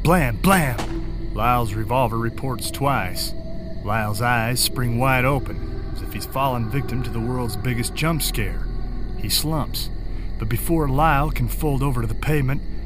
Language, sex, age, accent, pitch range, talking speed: English, male, 40-59, American, 100-130 Hz, 155 wpm